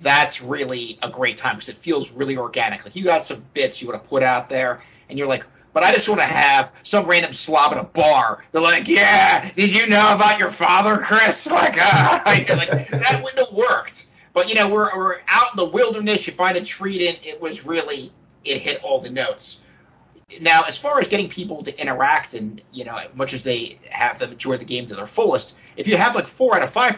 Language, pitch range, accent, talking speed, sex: English, 135-205 Hz, American, 235 wpm, male